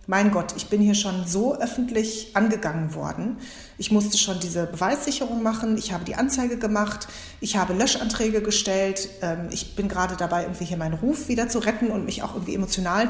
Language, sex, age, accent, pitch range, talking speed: German, female, 30-49, German, 185-225 Hz, 190 wpm